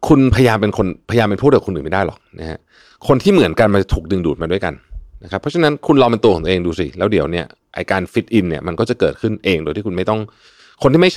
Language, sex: Thai, male